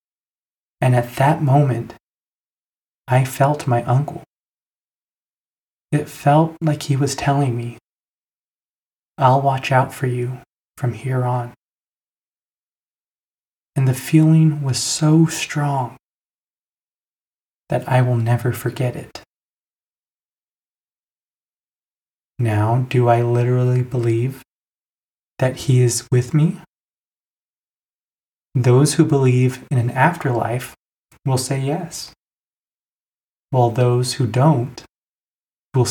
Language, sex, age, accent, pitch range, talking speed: English, male, 20-39, American, 125-145 Hz, 100 wpm